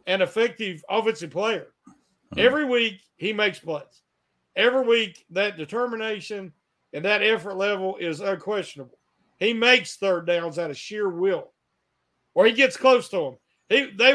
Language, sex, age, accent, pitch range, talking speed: English, male, 50-69, American, 170-230 Hz, 150 wpm